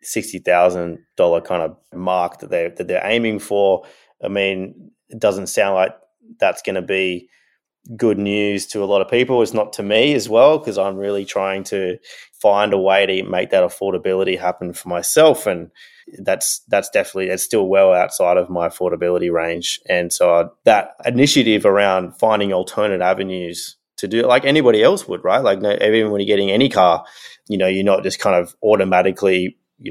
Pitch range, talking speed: 90-105 Hz, 195 wpm